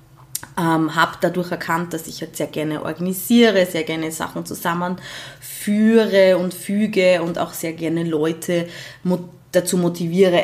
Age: 20-39